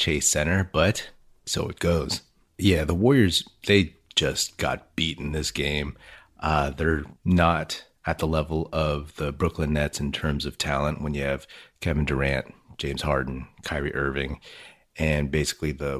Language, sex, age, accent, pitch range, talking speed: English, male, 30-49, American, 75-85 Hz, 160 wpm